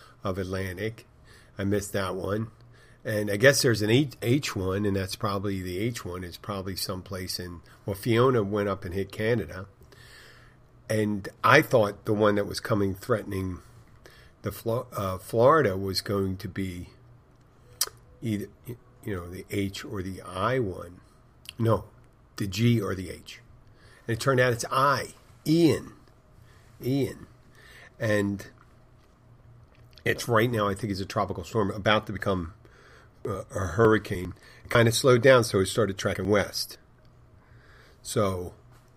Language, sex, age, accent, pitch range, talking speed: English, male, 50-69, American, 100-120 Hz, 150 wpm